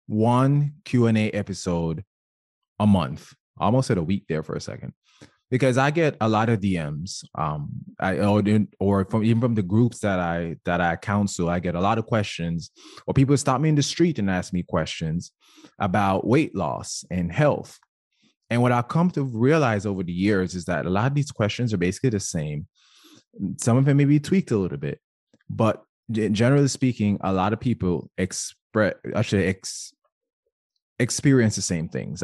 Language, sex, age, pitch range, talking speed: English, male, 20-39, 90-130 Hz, 185 wpm